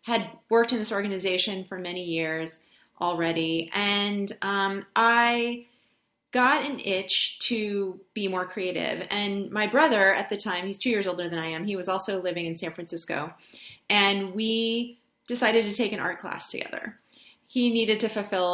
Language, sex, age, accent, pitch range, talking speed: English, female, 30-49, American, 175-225 Hz, 170 wpm